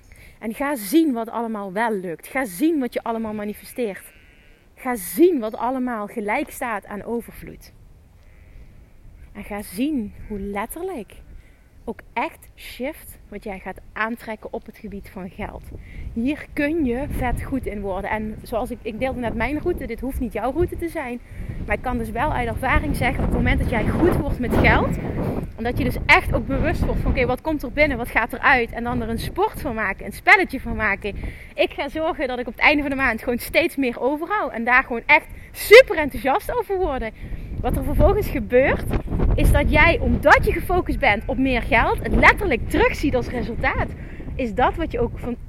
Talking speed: 200 wpm